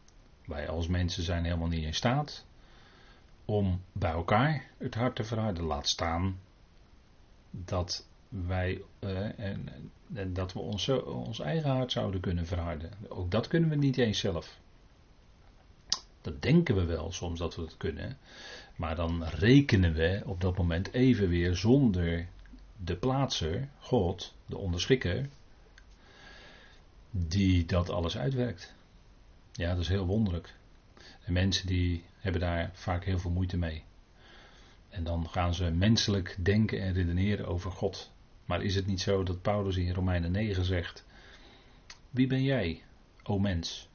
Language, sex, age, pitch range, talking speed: Dutch, male, 40-59, 85-115 Hz, 140 wpm